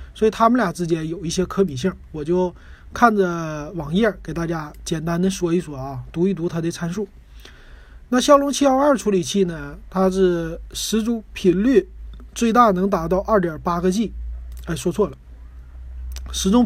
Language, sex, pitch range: Chinese, male, 160-215 Hz